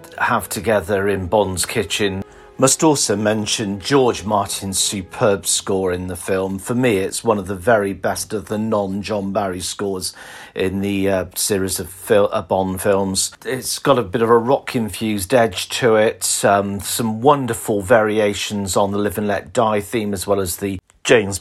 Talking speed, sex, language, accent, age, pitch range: 175 wpm, male, English, British, 40-59, 95-110 Hz